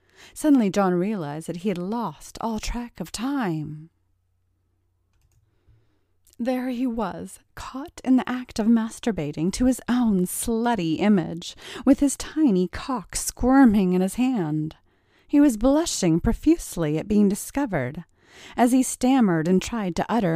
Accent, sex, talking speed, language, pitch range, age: American, female, 140 wpm, English, 160-240 Hz, 30-49